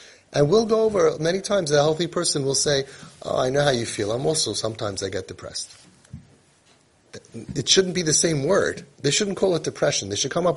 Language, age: English, 30-49